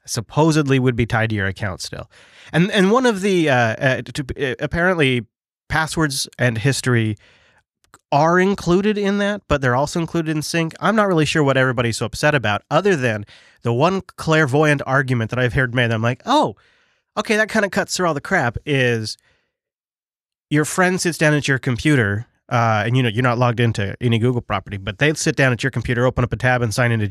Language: English